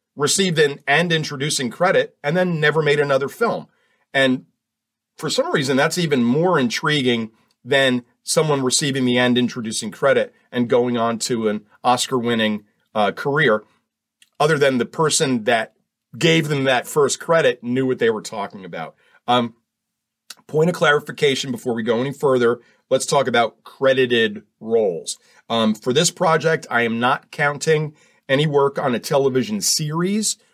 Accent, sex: American, male